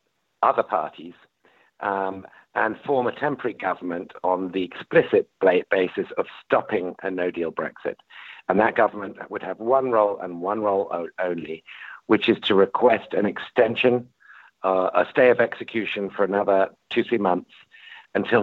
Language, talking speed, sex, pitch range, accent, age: English, 145 wpm, male, 95-105 Hz, British, 50-69